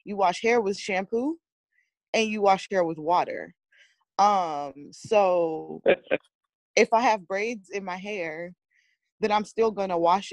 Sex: female